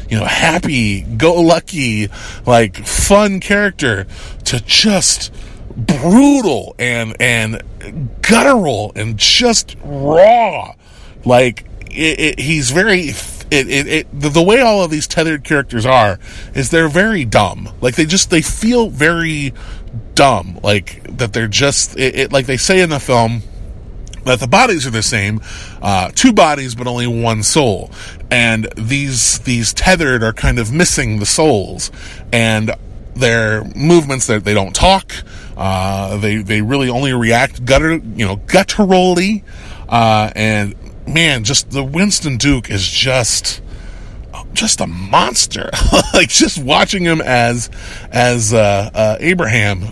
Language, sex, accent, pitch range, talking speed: English, male, American, 105-155 Hz, 135 wpm